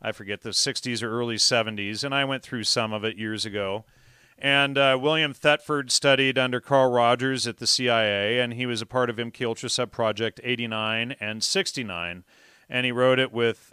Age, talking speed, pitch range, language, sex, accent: 40-59, 190 wpm, 110-135 Hz, English, male, American